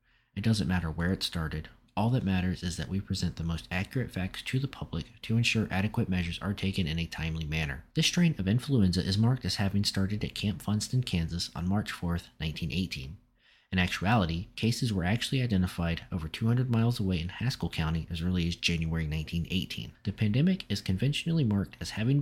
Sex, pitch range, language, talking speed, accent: male, 85-115 Hz, English, 195 wpm, American